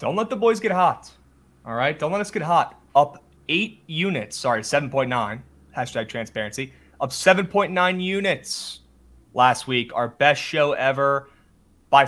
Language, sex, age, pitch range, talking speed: English, male, 30-49, 120-150 Hz, 150 wpm